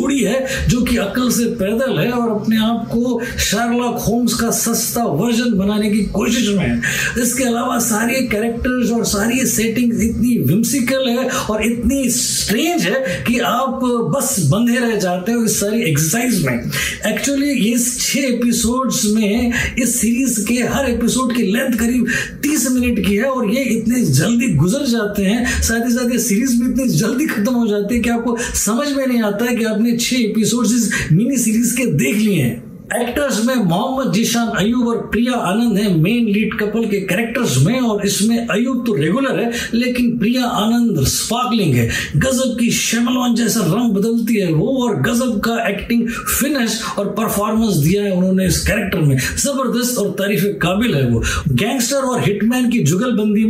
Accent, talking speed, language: native, 110 wpm, Hindi